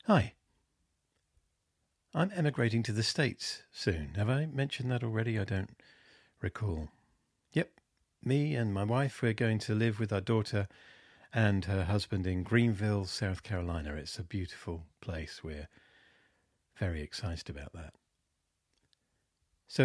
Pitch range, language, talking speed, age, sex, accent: 85-110 Hz, English, 135 wpm, 40-59, male, British